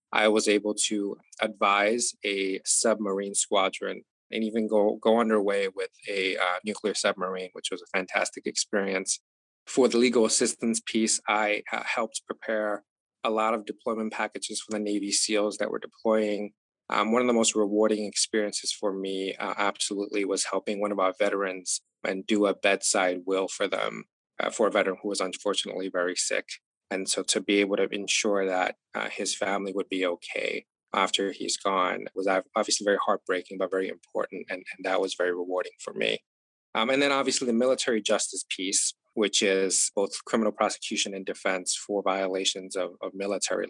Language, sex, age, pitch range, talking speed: English, male, 20-39, 95-110 Hz, 175 wpm